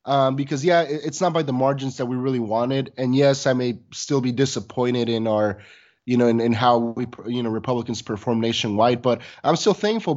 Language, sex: English, male